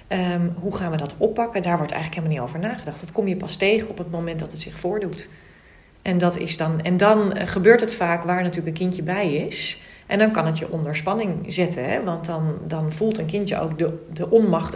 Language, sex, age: Dutch, female, 30-49